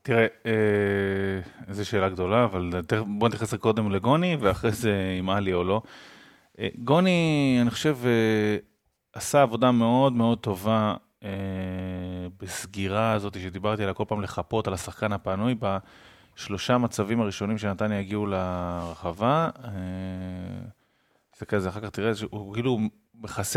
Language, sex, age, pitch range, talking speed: Hebrew, male, 30-49, 95-120 Hz, 125 wpm